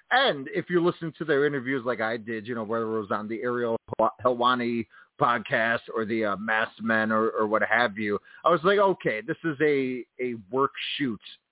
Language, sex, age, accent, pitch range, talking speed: English, male, 30-49, American, 125-175 Hz, 210 wpm